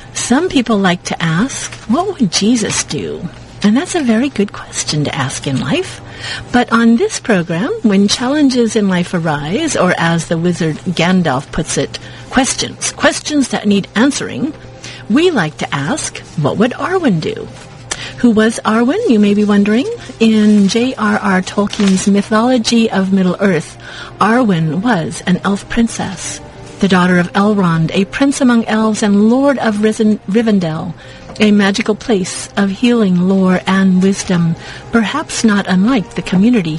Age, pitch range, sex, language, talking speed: 50-69, 175-220 Hz, female, English, 150 wpm